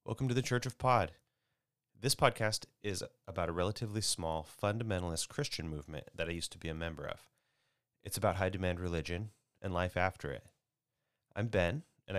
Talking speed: 170 wpm